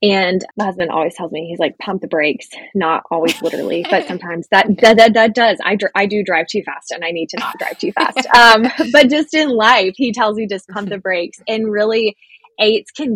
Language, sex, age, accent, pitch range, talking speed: English, female, 20-39, American, 165-210 Hz, 235 wpm